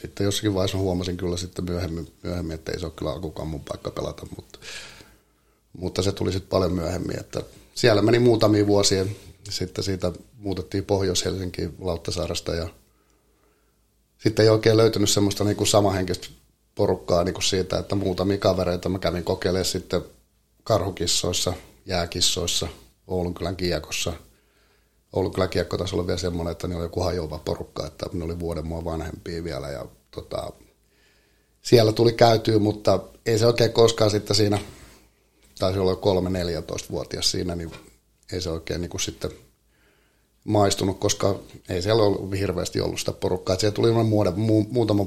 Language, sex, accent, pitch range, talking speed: Finnish, male, native, 90-105 Hz, 150 wpm